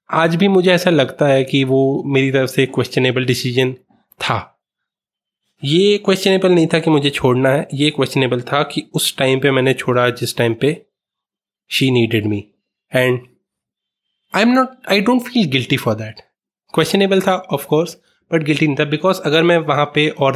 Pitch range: 130-165 Hz